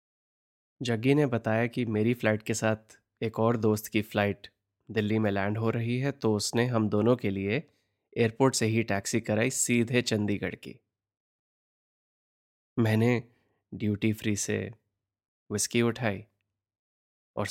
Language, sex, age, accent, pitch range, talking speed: Hindi, male, 20-39, native, 100-120 Hz, 135 wpm